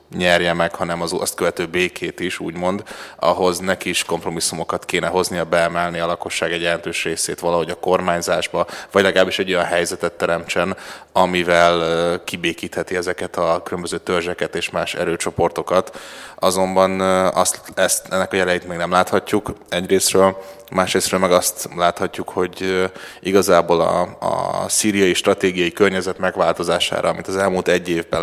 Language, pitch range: Hungarian, 85-95 Hz